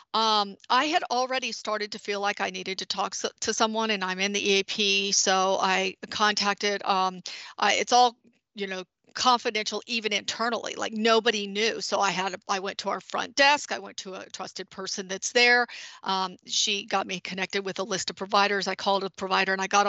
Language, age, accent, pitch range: English, 50-69, American, 195-245 Hz